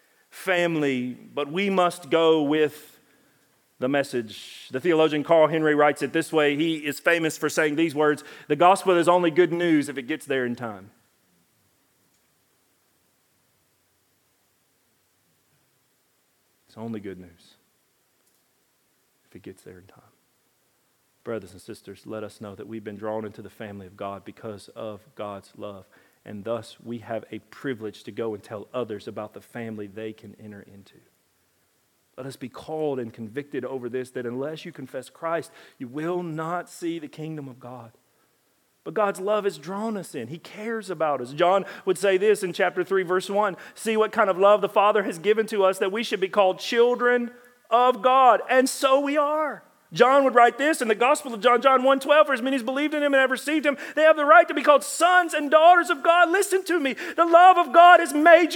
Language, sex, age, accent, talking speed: English, male, 40-59, American, 195 wpm